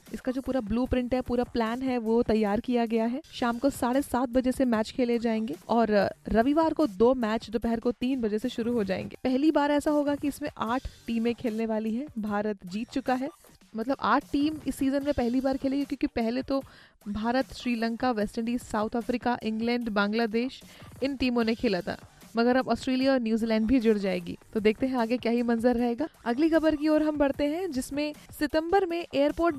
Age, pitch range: 20-39, 225-275 Hz